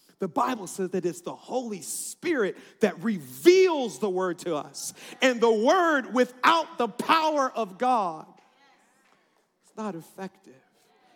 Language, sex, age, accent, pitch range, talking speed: English, male, 40-59, American, 195-280 Hz, 135 wpm